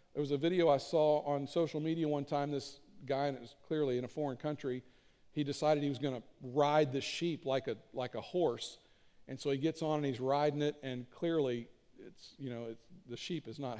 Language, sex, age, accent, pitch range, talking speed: English, male, 50-69, American, 135-175 Hz, 230 wpm